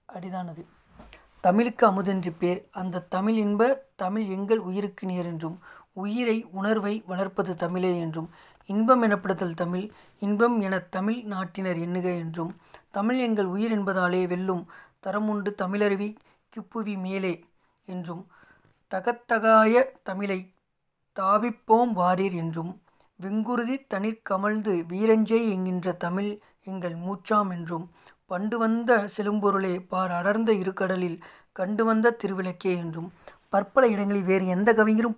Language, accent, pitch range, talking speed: Tamil, native, 180-220 Hz, 105 wpm